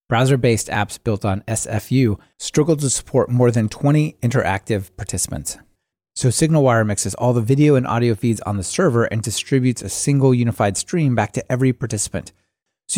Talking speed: 165 wpm